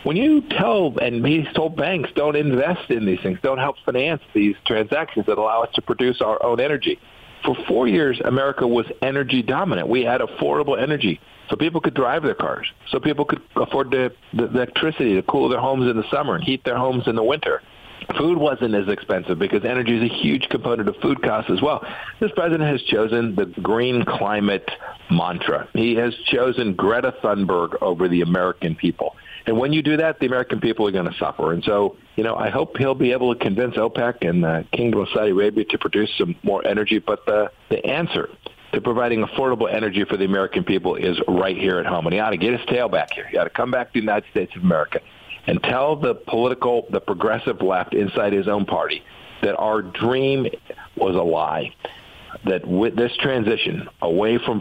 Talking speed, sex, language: 210 wpm, male, English